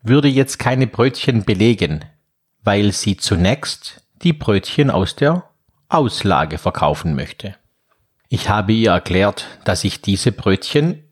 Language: German